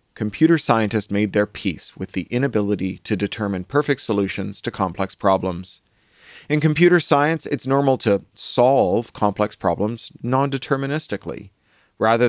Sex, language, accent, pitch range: male, English, American, 95-130 Hz